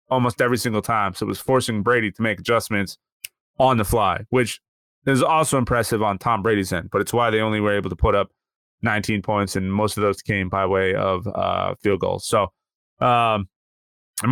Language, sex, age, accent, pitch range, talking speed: English, male, 30-49, American, 105-130 Hz, 205 wpm